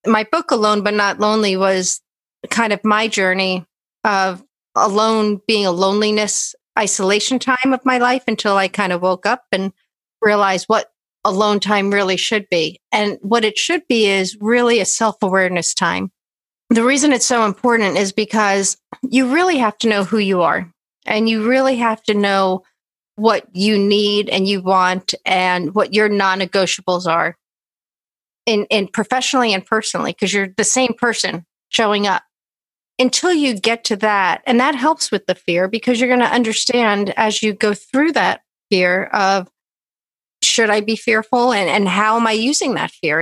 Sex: female